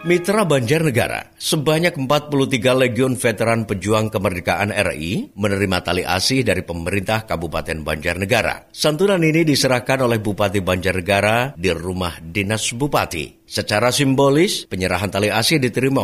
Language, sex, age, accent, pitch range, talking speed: Indonesian, male, 50-69, native, 90-130 Hz, 120 wpm